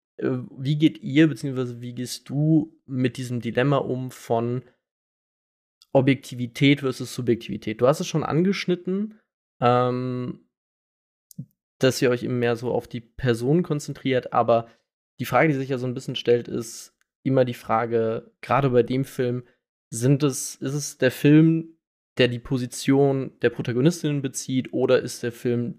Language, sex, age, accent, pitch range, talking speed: German, male, 20-39, German, 120-140 Hz, 150 wpm